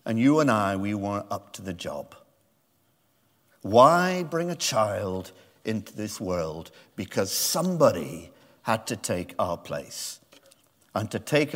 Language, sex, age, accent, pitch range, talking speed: English, male, 50-69, British, 135-180 Hz, 140 wpm